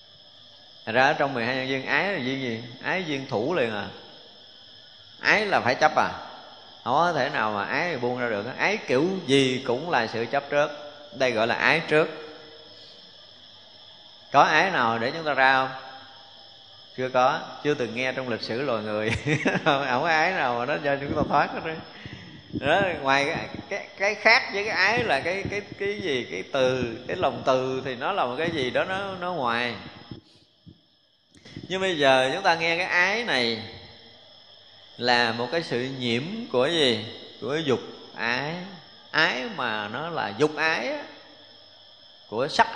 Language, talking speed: Vietnamese, 185 wpm